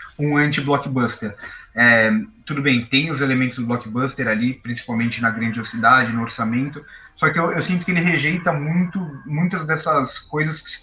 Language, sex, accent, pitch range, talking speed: Portuguese, male, Brazilian, 130-170 Hz, 165 wpm